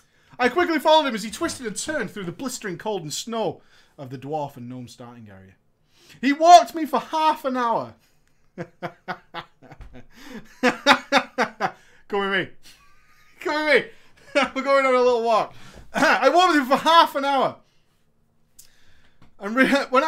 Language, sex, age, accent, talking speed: English, male, 30-49, British, 150 wpm